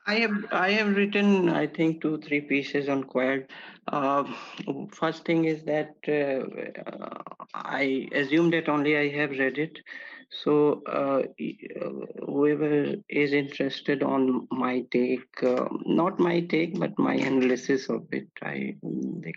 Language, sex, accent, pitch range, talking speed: English, male, Indian, 125-165 Hz, 140 wpm